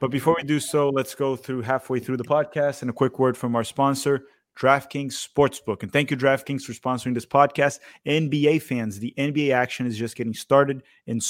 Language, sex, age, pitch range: English, male, 30-49, 120-145 Hz